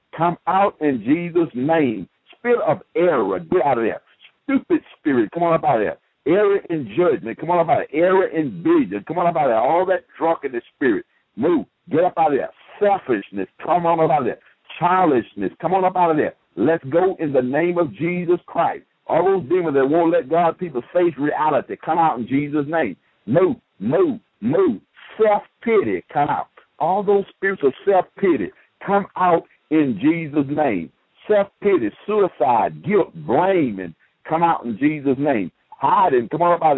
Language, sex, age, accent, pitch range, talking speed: English, male, 60-79, American, 160-210 Hz, 195 wpm